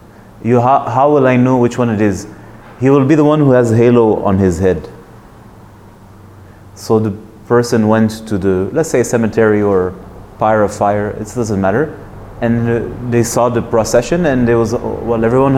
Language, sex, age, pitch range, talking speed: English, male, 30-49, 95-120 Hz, 175 wpm